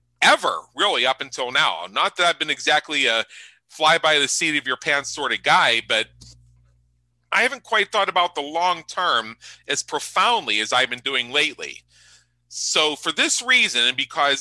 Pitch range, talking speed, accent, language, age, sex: 125-160 Hz, 180 wpm, American, English, 40-59, male